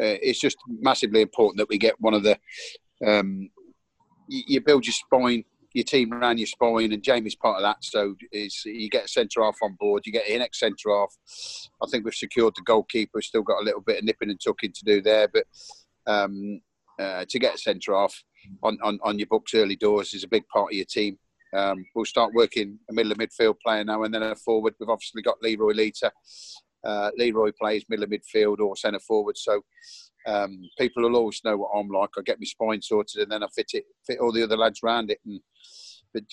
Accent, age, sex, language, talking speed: British, 40-59, male, English, 230 wpm